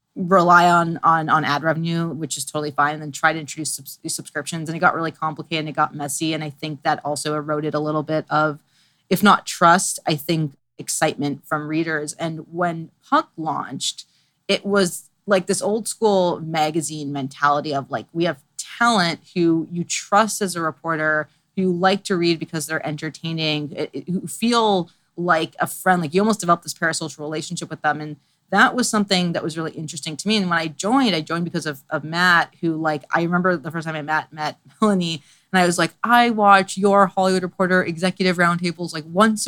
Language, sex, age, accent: English, female, 30-49, American